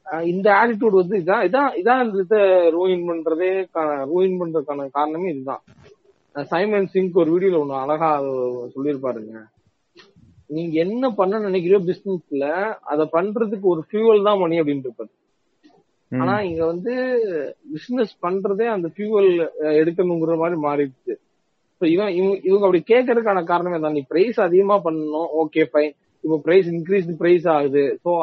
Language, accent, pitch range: Tamil, native, 150-195 Hz